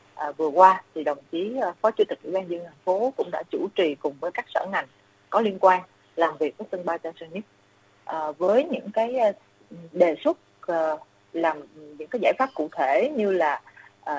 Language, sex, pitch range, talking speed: Vietnamese, female, 165-215 Hz, 225 wpm